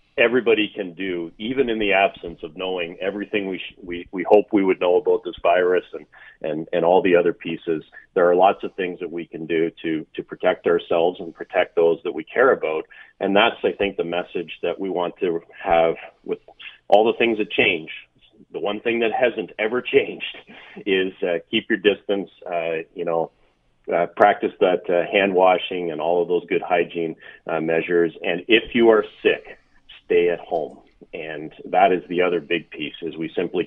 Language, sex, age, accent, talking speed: English, male, 40-59, American, 200 wpm